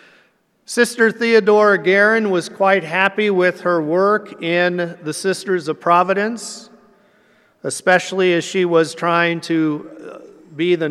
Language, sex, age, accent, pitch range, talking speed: English, male, 50-69, American, 165-200 Hz, 120 wpm